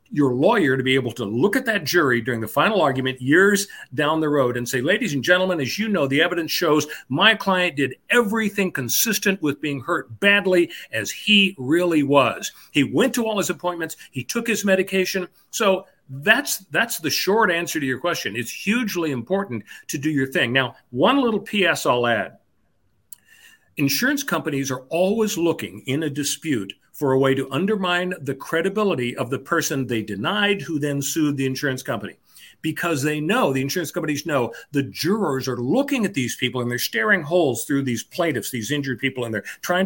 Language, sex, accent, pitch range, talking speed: English, male, American, 130-190 Hz, 190 wpm